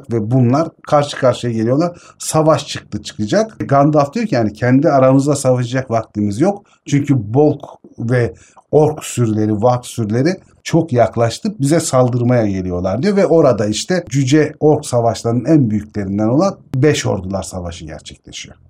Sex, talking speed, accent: male, 140 wpm, native